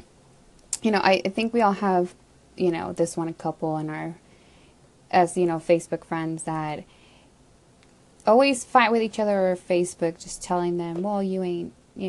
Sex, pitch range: female, 170-220 Hz